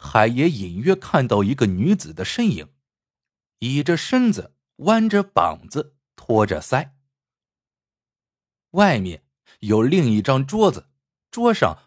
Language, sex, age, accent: Chinese, male, 50-69, native